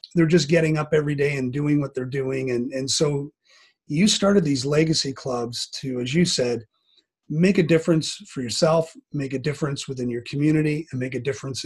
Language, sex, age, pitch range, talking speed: English, male, 30-49, 130-160 Hz, 195 wpm